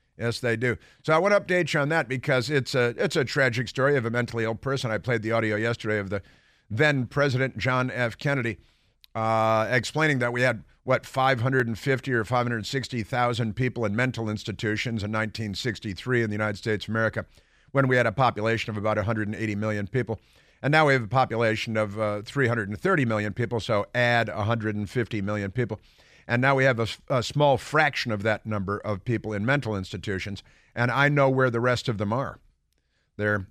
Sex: male